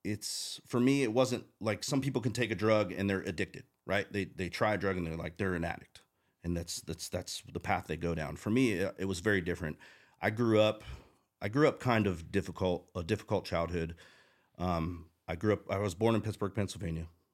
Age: 40-59